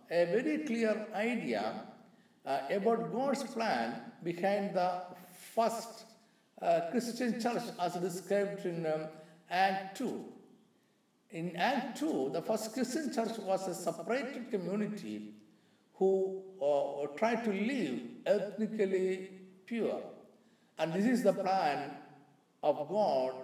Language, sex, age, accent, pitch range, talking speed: Malayalam, male, 50-69, native, 175-235 Hz, 120 wpm